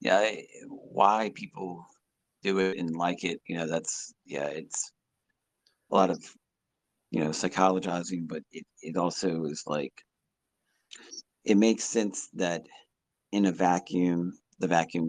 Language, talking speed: English, 135 wpm